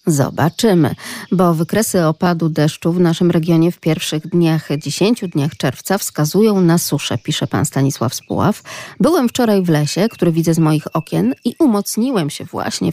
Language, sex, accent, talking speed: Polish, female, native, 160 wpm